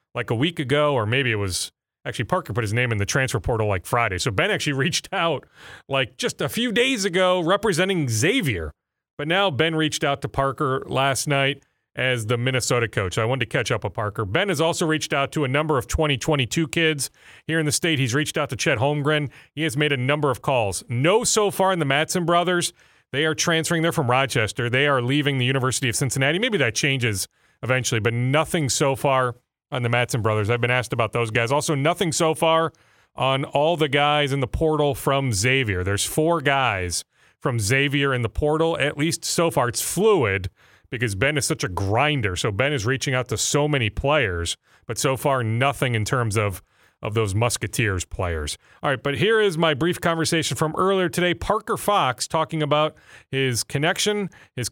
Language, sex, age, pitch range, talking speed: English, male, 30-49, 120-155 Hz, 205 wpm